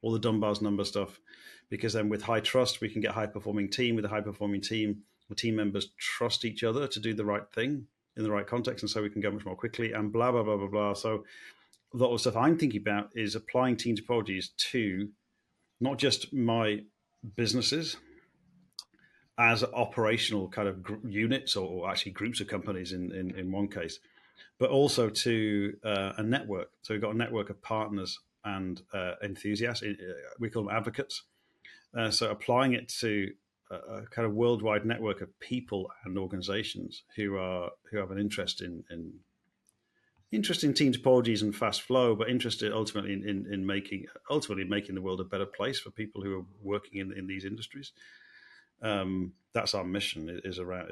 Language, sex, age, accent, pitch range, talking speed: English, male, 40-59, British, 100-120 Hz, 190 wpm